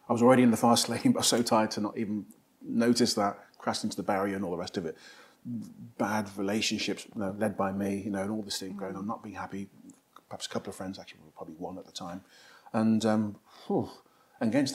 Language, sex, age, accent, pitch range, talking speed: English, male, 40-59, British, 100-120 Hz, 240 wpm